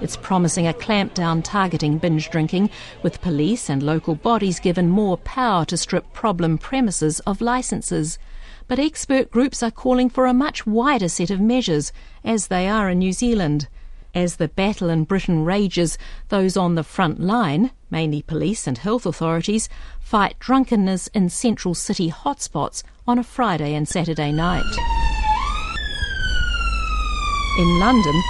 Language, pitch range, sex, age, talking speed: English, 170-235 Hz, female, 50-69, 145 wpm